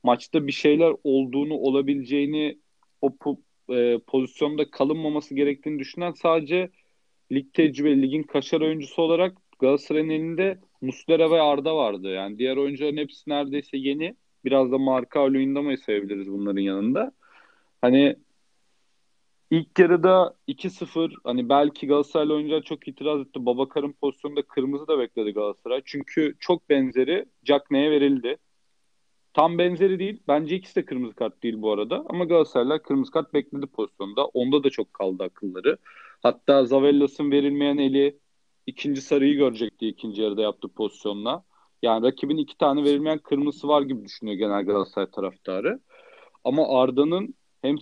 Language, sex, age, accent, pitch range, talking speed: Turkish, male, 40-59, native, 135-155 Hz, 140 wpm